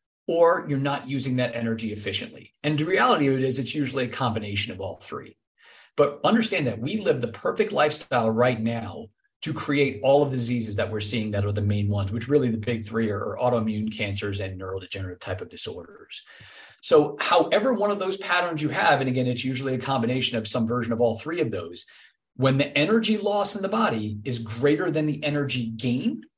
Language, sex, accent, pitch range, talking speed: English, male, American, 110-140 Hz, 210 wpm